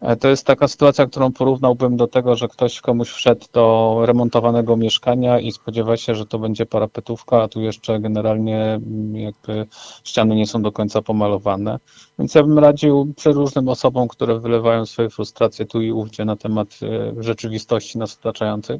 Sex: male